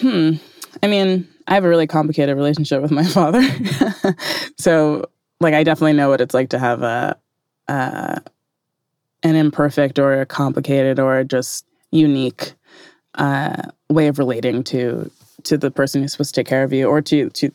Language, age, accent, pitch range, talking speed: English, 20-39, American, 135-160 Hz, 170 wpm